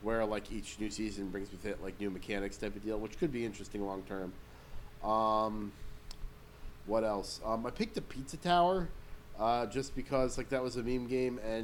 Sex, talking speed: male, 190 wpm